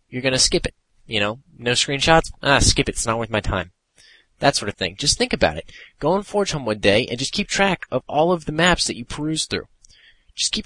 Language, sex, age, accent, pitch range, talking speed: English, male, 20-39, American, 105-130 Hz, 260 wpm